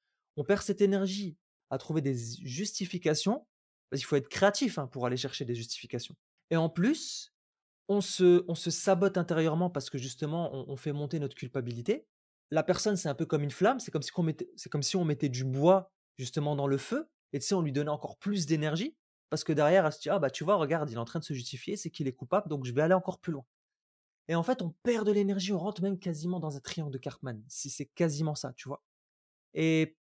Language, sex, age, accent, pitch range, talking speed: French, male, 20-39, French, 140-185 Hz, 240 wpm